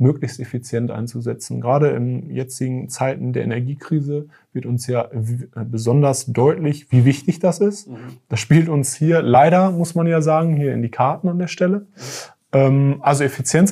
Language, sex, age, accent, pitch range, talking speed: German, male, 20-39, German, 125-155 Hz, 160 wpm